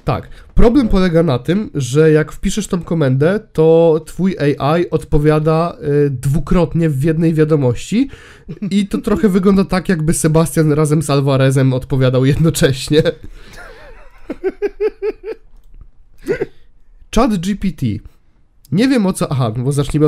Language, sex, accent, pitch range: Polish, male, native, 135-185 Hz